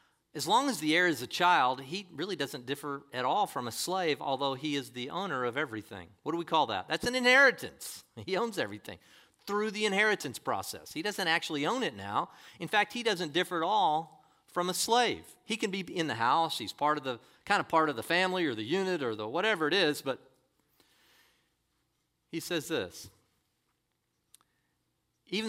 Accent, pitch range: American, 140-190 Hz